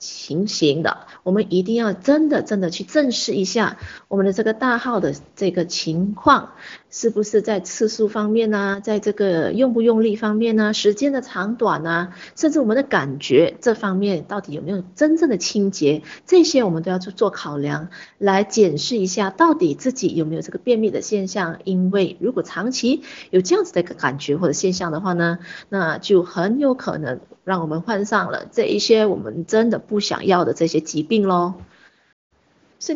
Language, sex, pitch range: Chinese, female, 175-240 Hz